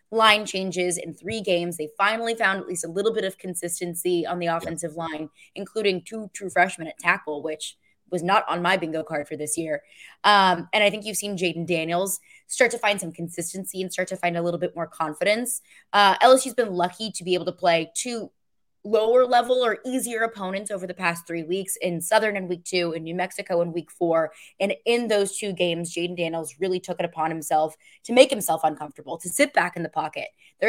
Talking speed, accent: 215 wpm, American